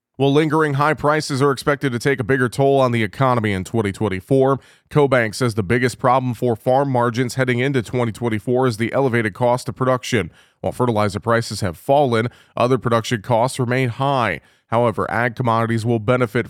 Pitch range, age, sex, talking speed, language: 115-135 Hz, 30-49, male, 175 wpm, English